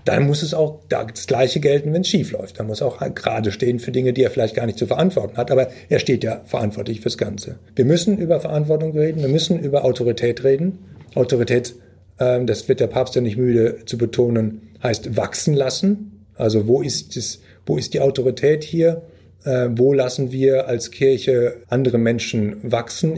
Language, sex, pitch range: German, male, 110-145 Hz